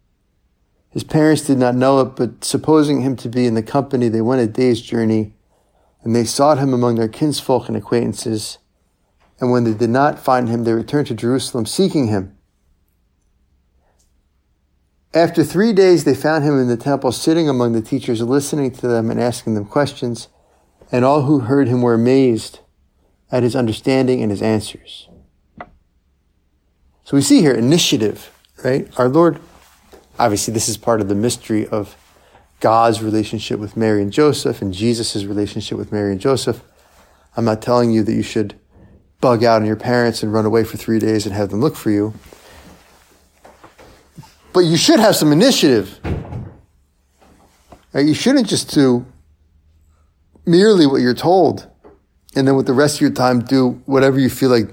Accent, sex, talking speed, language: American, male, 170 wpm, English